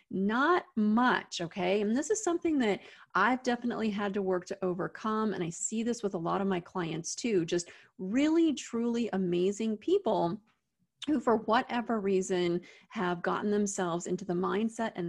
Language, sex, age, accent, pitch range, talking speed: English, female, 30-49, American, 180-235 Hz, 165 wpm